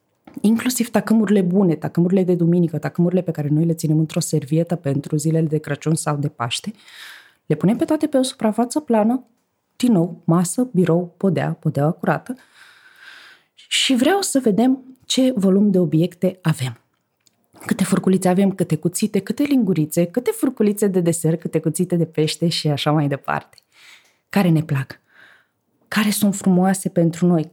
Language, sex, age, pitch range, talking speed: Romanian, female, 20-39, 155-215 Hz, 155 wpm